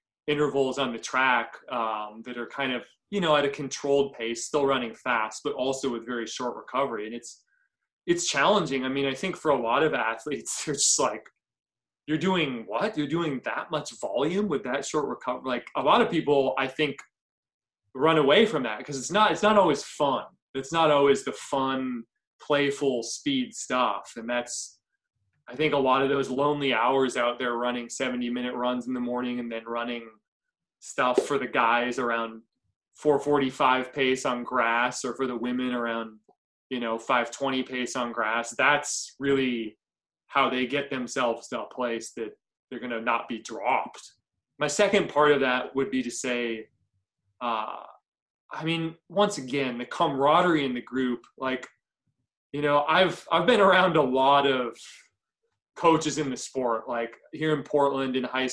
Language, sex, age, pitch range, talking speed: English, male, 20-39, 120-145 Hz, 180 wpm